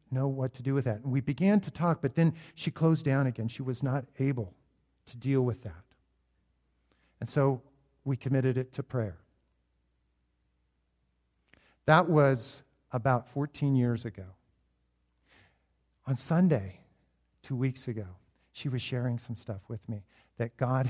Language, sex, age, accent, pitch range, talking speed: English, male, 50-69, American, 95-150 Hz, 150 wpm